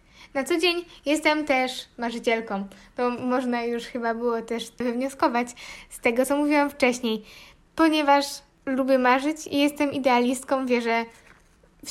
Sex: female